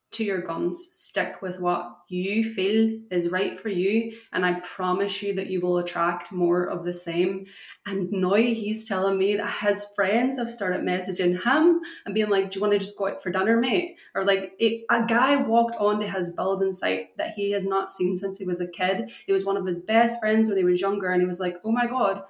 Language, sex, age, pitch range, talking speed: English, female, 20-39, 185-215 Hz, 230 wpm